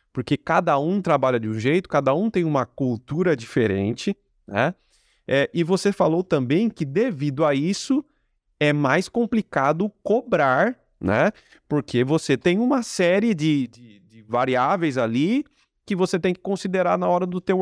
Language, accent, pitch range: Portuguese, Brazilian, 145-205 Hz